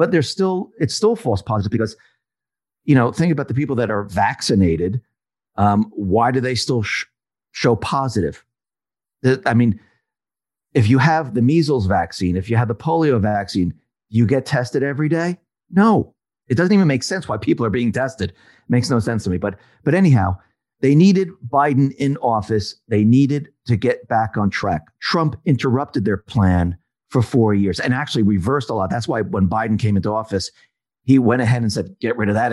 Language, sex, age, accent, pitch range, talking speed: English, male, 40-59, American, 105-135 Hz, 190 wpm